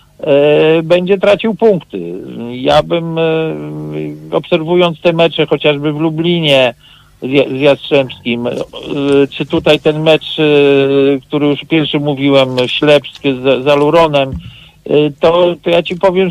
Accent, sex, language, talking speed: Polish, male, English, 105 wpm